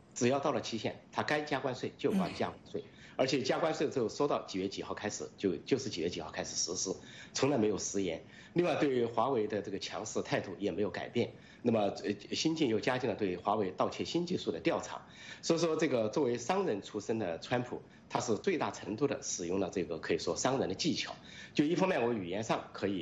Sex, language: male, English